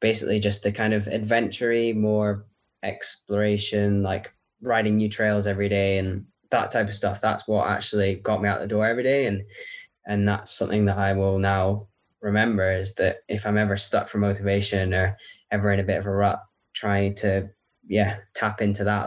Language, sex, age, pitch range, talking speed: English, male, 10-29, 95-105 Hz, 190 wpm